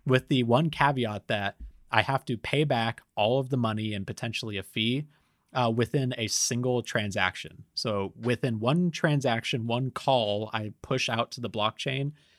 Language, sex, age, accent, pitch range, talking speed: English, male, 30-49, American, 105-130 Hz, 170 wpm